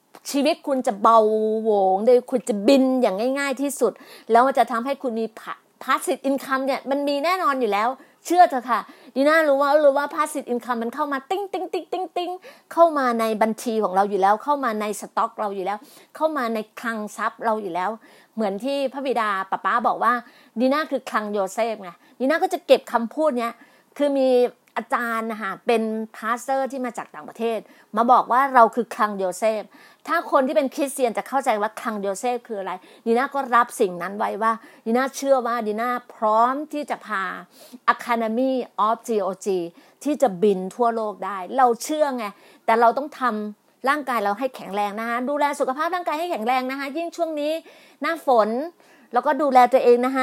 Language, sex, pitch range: Thai, female, 225-280 Hz